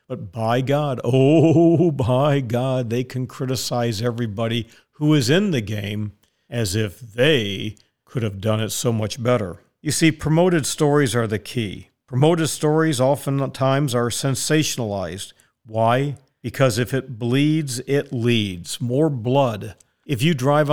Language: English